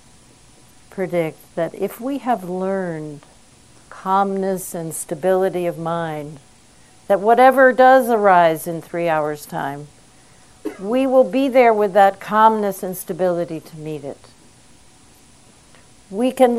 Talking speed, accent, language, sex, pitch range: 120 wpm, American, English, female, 165-205 Hz